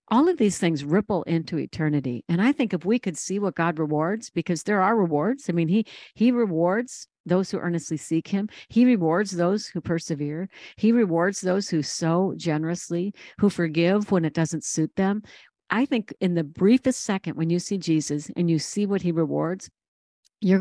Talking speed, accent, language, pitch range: 190 wpm, American, English, 165-215 Hz